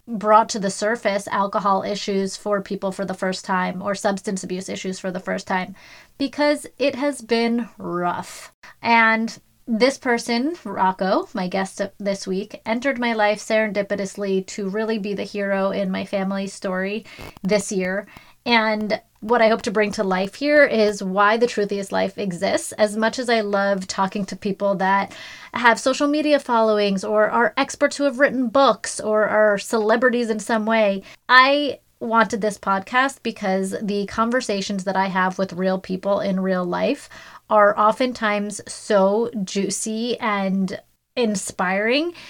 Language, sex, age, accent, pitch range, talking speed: English, female, 30-49, American, 195-230 Hz, 155 wpm